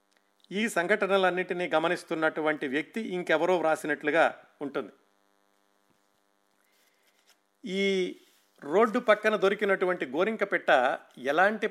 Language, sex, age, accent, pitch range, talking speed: Telugu, male, 50-69, native, 140-185 Hz, 65 wpm